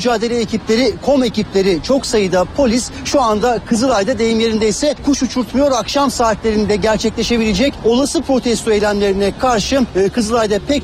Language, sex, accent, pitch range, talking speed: Turkish, male, native, 205-250 Hz, 135 wpm